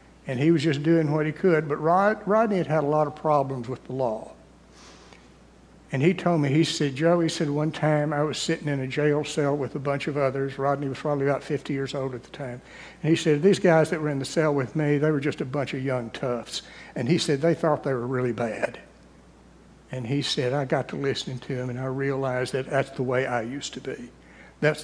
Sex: male